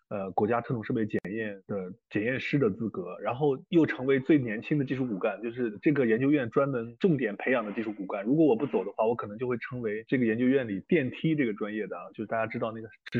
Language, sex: Chinese, male